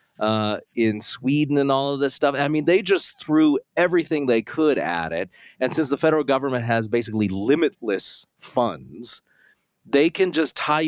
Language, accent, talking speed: English, American, 170 wpm